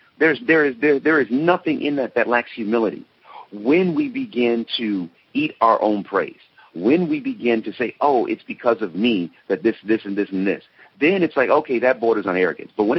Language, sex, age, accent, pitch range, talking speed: English, male, 40-59, American, 100-130 Hz, 215 wpm